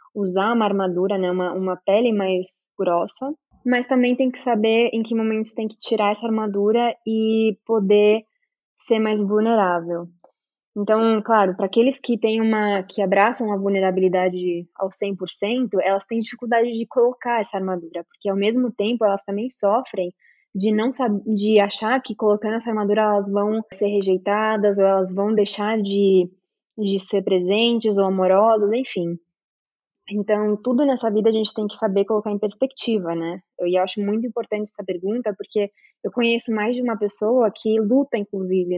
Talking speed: 160 wpm